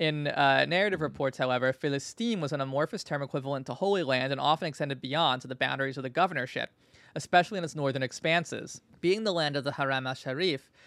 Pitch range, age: 130-160 Hz, 20-39